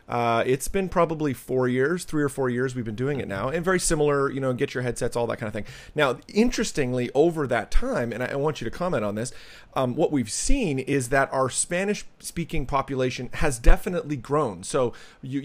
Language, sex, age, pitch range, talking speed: English, male, 30-49, 120-150 Hz, 220 wpm